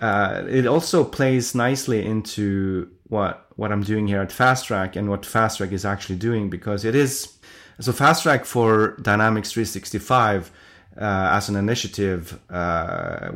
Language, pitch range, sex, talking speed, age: English, 95-115 Hz, male, 145 wpm, 30-49